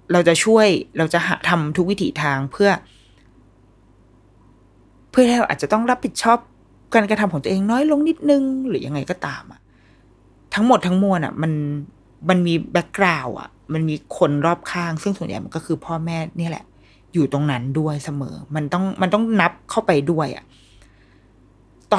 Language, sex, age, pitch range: Thai, female, 20-39, 125-195 Hz